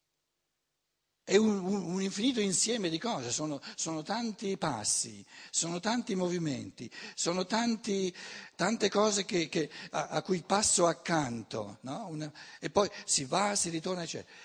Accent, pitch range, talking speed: native, 165-225 Hz, 125 wpm